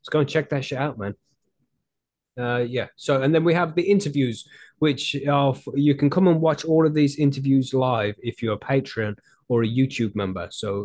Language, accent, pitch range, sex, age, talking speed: English, British, 110-135 Hz, male, 20-39, 215 wpm